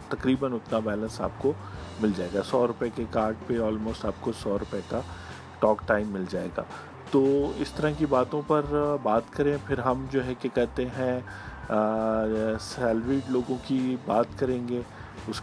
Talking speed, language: 175 wpm, Urdu